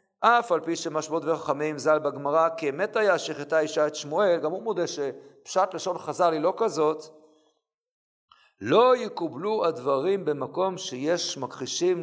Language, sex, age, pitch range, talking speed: Hebrew, male, 50-69, 170-235 Hz, 135 wpm